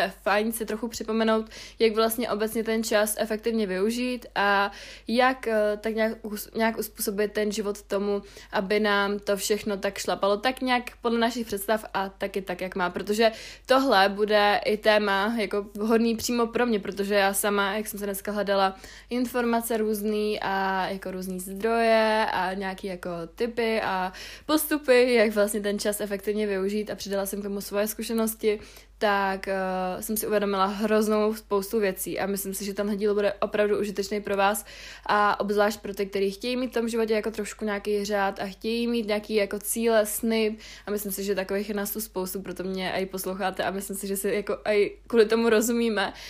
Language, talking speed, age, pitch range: Czech, 185 wpm, 20-39, 195-220 Hz